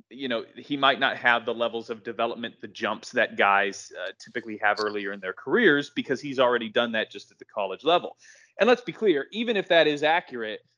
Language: English